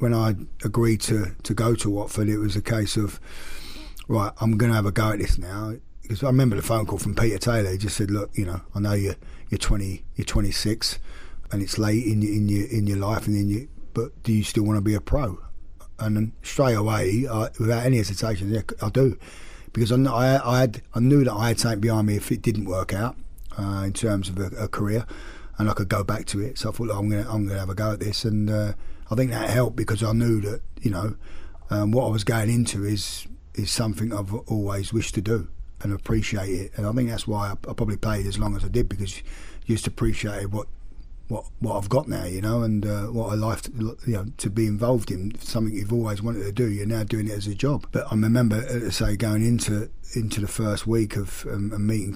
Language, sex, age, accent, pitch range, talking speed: English, male, 30-49, British, 100-115 Hz, 250 wpm